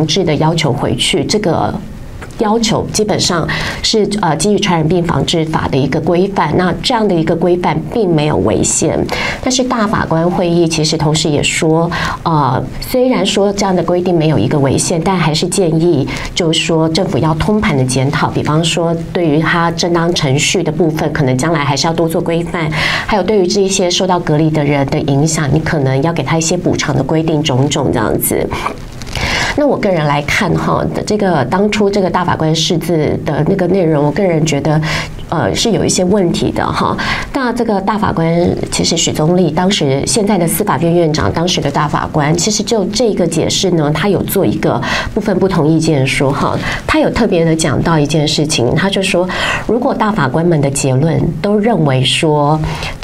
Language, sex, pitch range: Chinese, female, 150-185 Hz